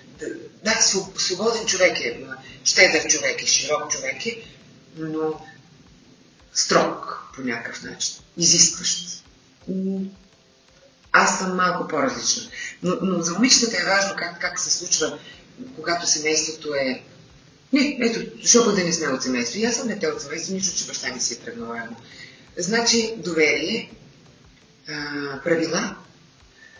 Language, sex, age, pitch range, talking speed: Bulgarian, female, 30-49, 150-195 Hz, 130 wpm